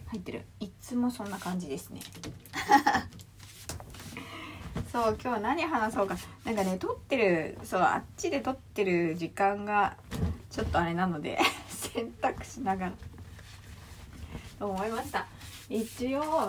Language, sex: Japanese, female